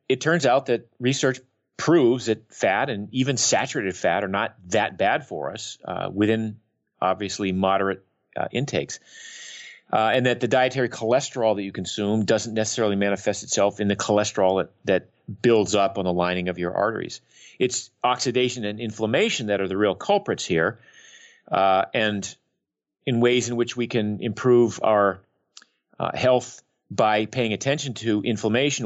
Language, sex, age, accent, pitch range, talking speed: English, male, 40-59, American, 95-120 Hz, 160 wpm